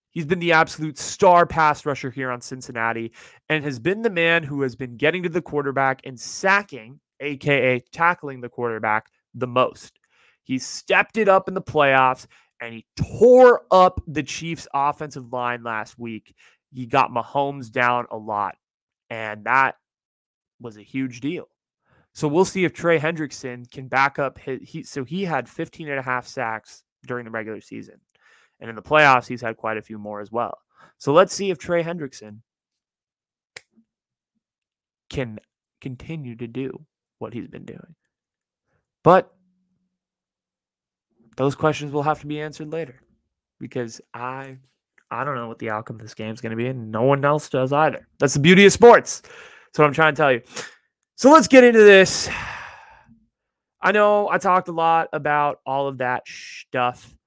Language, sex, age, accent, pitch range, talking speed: English, male, 20-39, American, 120-165 Hz, 170 wpm